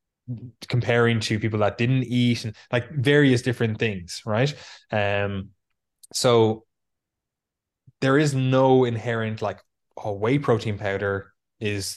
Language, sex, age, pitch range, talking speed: English, male, 20-39, 100-120 Hz, 120 wpm